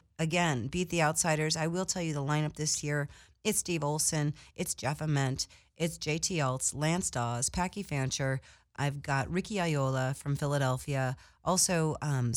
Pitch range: 130-165 Hz